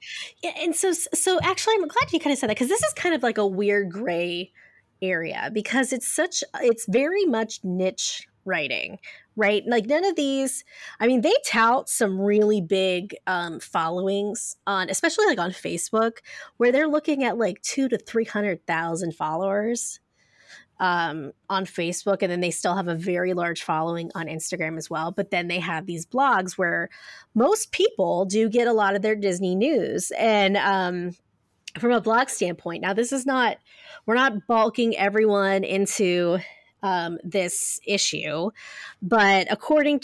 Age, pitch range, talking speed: 20-39, 180-240 Hz, 170 wpm